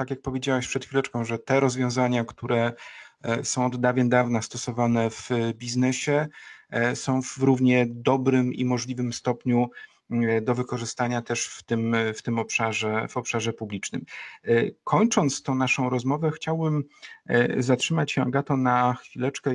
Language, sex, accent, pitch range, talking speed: Polish, male, native, 115-130 Hz, 135 wpm